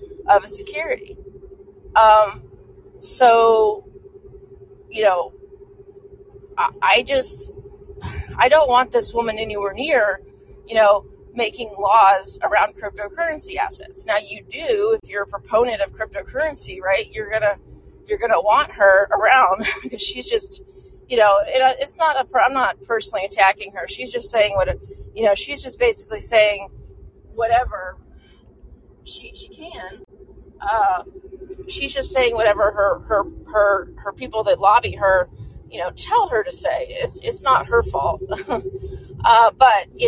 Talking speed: 145 wpm